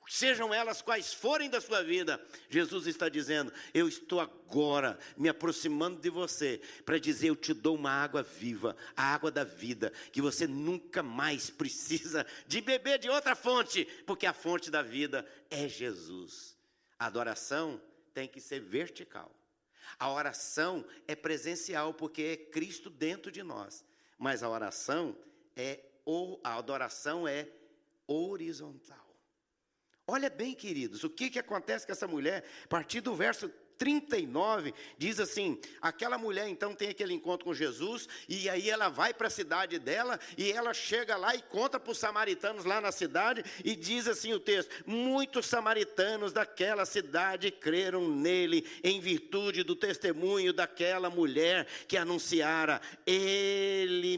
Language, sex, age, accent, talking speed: Portuguese, male, 50-69, Brazilian, 145 wpm